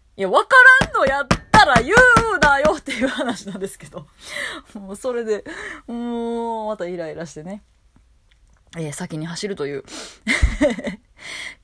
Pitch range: 155-240 Hz